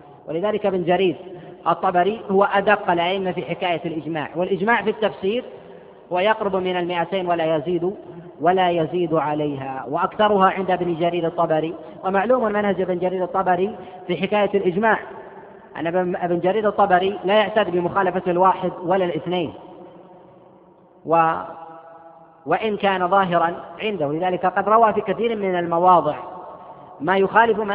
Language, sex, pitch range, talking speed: Arabic, female, 175-200 Hz, 125 wpm